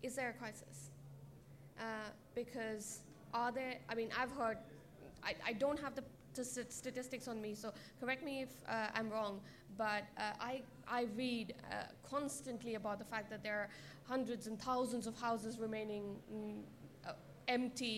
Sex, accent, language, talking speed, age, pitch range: female, Indian, English, 160 wpm, 20-39, 195-240 Hz